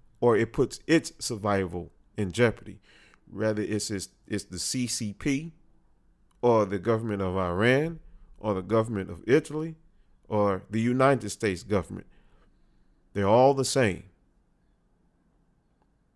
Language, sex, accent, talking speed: English, male, American, 120 wpm